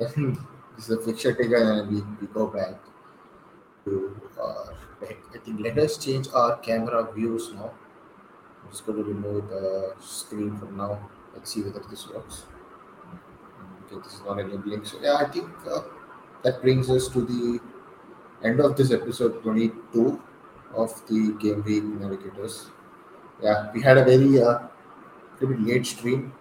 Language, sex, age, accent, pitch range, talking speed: English, male, 30-49, Indian, 105-120 Hz, 160 wpm